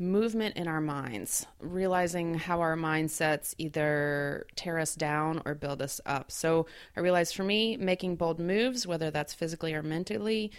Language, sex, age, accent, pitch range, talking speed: English, female, 30-49, American, 155-195 Hz, 165 wpm